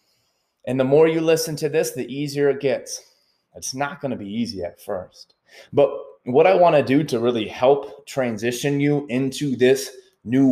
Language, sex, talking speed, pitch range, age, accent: English, male, 190 wpm, 125-165 Hz, 20-39, American